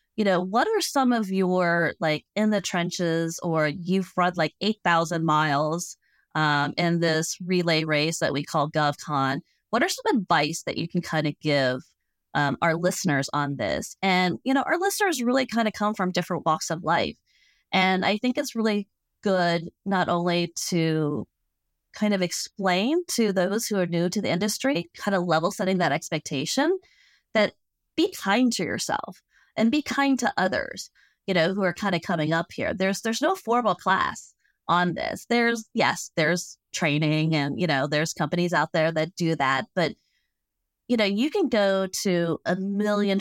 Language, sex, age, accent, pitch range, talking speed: English, female, 30-49, American, 160-210 Hz, 180 wpm